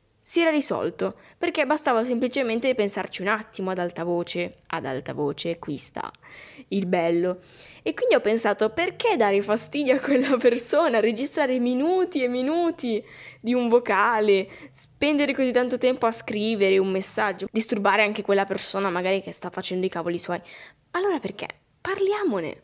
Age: 10-29